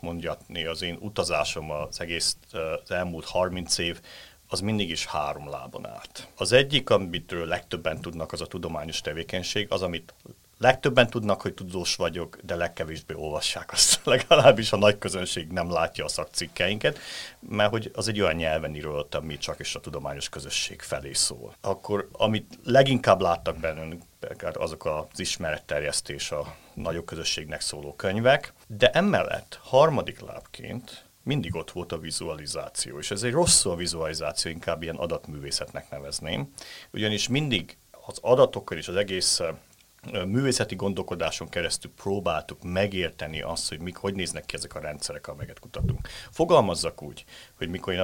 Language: Hungarian